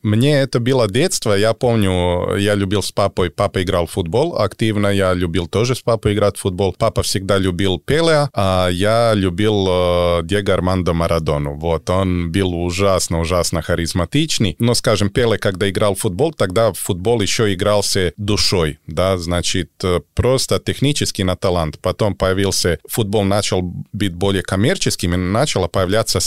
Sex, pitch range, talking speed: male, 90-110 Hz, 150 wpm